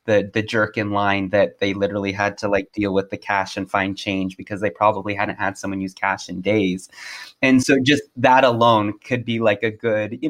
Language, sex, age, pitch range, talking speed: English, male, 30-49, 100-125 Hz, 225 wpm